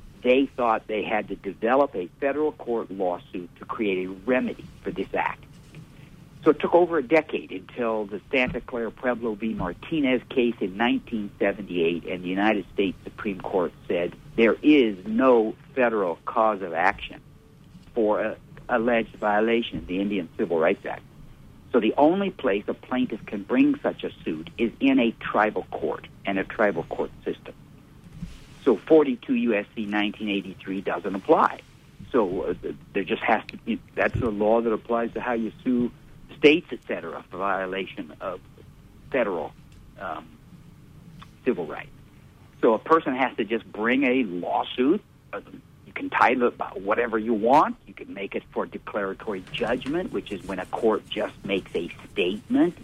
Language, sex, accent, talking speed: English, male, American, 160 wpm